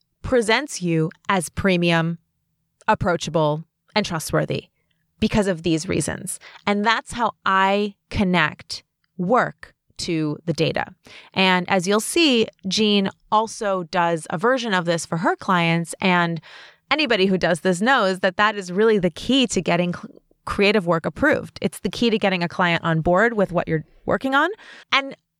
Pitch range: 170-230 Hz